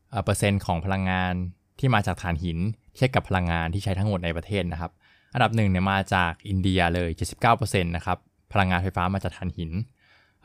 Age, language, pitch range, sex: 20-39, Thai, 90-110 Hz, male